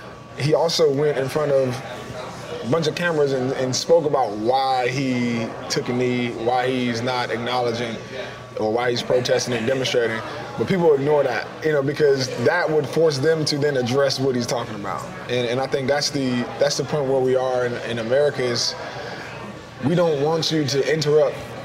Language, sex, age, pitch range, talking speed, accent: English, male, 20-39, 130-150 Hz, 190 wpm, American